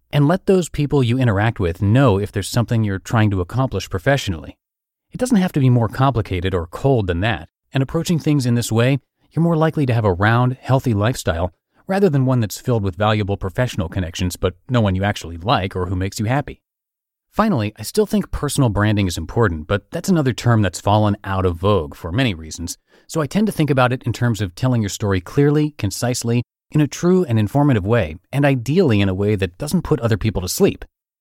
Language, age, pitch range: English, 30-49, 100-145 Hz